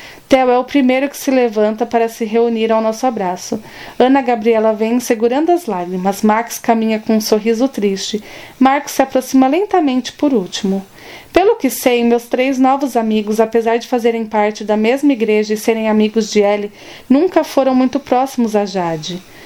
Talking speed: 175 wpm